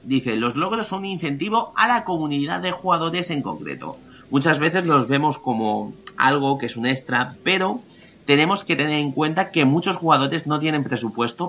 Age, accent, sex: 30-49, Spanish, male